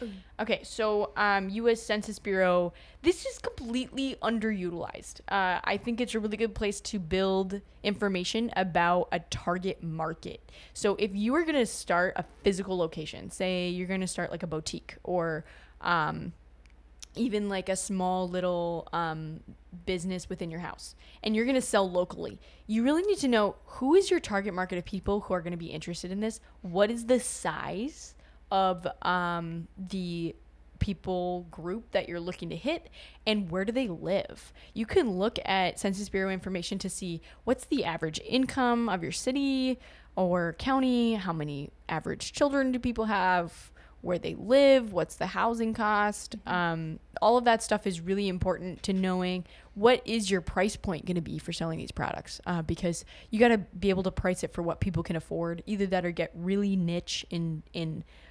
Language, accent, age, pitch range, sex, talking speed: English, American, 10-29, 175-220 Hz, female, 180 wpm